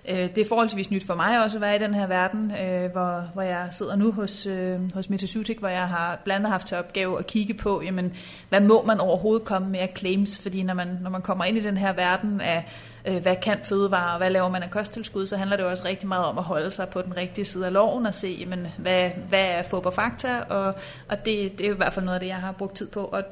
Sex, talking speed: female, 260 wpm